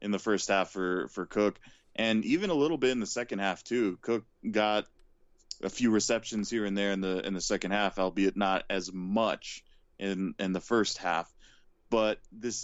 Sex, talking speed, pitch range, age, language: male, 200 wpm, 95-115 Hz, 20-39, English